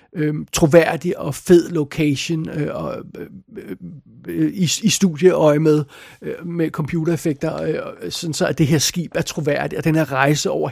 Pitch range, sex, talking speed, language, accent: 150-170 Hz, male, 175 wpm, Danish, native